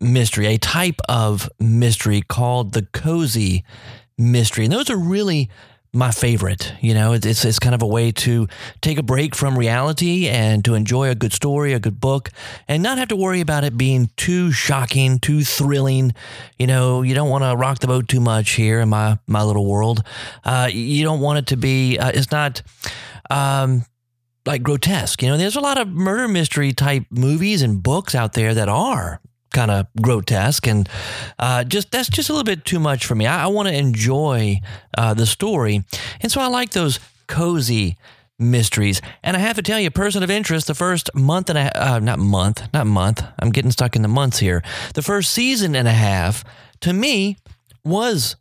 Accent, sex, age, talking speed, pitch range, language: American, male, 30-49, 200 wpm, 115-145 Hz, English